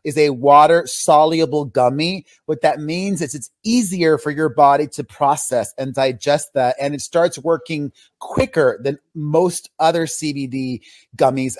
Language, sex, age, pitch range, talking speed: English, male, 30-49, 140-180 Hz, 145 wpm